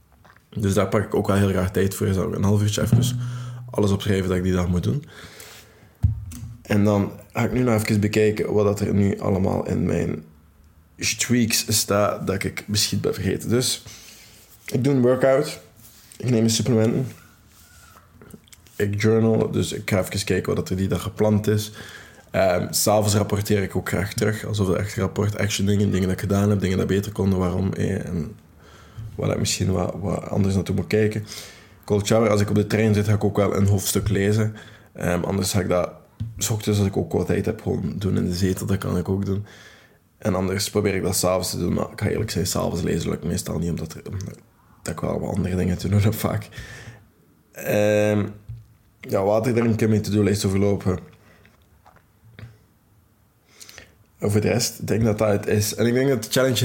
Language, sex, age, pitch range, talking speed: Dutch, male, 20-39, 95-110 Hz, 205 wpm